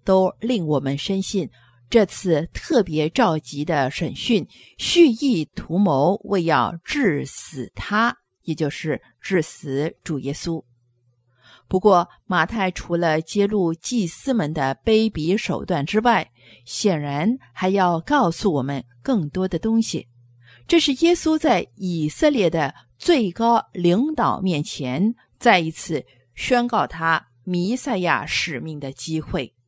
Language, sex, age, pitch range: English, female, 50-69, 140-220 Hz